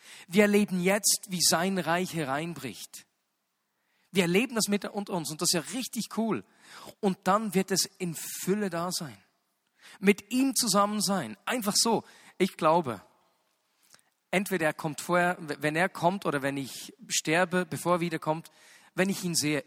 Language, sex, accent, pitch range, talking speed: German, male, German, 165-210 Hz, 160 wpm